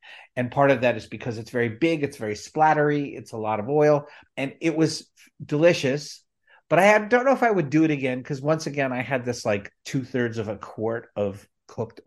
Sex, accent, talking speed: male, American, 225 wpm